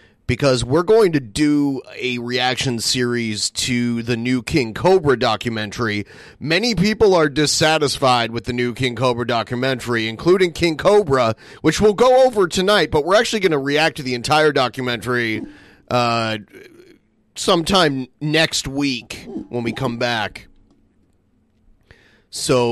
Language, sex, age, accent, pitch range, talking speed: English, male, 30-49, American, 120-160 Hz, 135 wpm